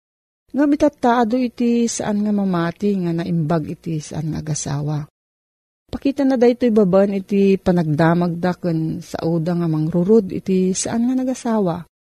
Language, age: Filipino, 40-59